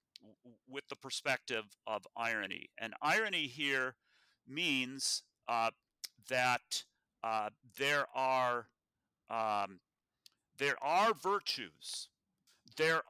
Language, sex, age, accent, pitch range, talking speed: English, male, 50-69, American, 120-155 Hz, 85 wpm